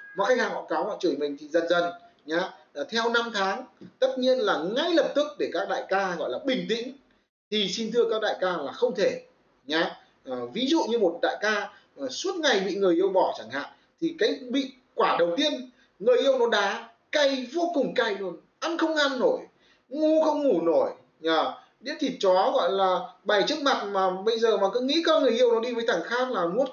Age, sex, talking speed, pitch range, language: 20-39, male, 225 wpm, 205-330 Hz, Vietnamese